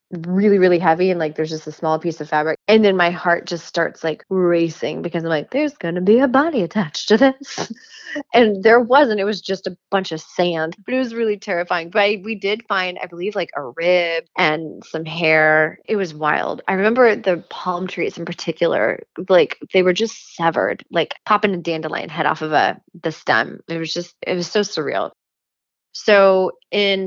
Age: 20-39